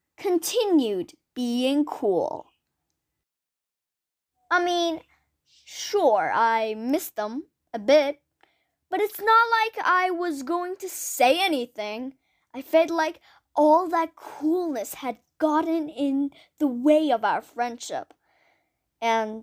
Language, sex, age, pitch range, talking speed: Persian, female, 10-29, 245-335 Hz, 110 wpm